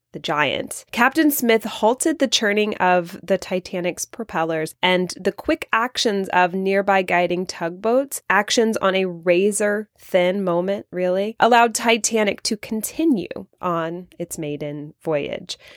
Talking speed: 125 wpm